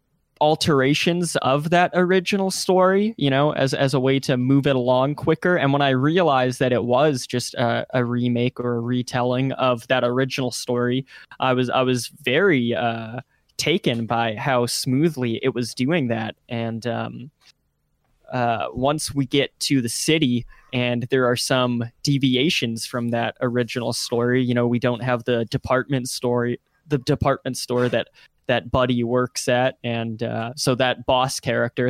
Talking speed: 165 wpm